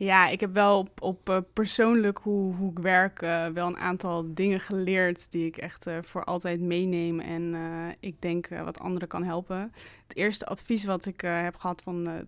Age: 20-39